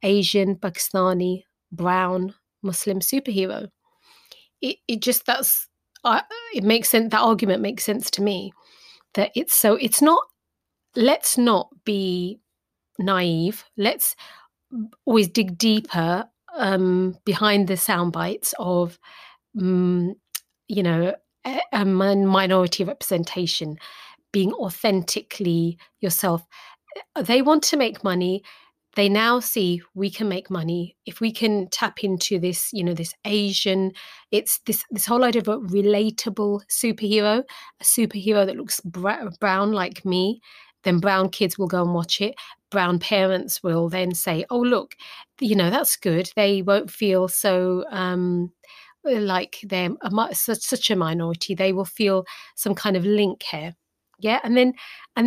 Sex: female